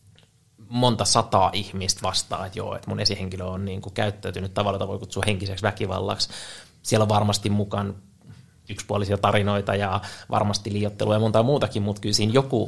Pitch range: 100-110 Hz